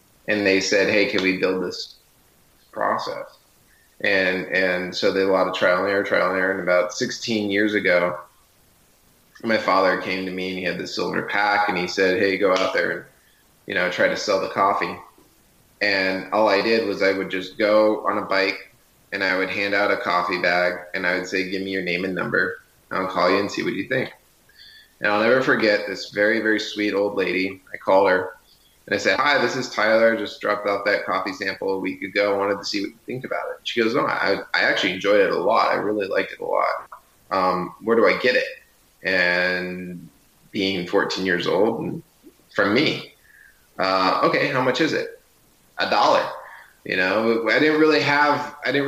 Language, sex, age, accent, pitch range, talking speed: English, male, 20-39, American, 95-120 Hz, 220 wpm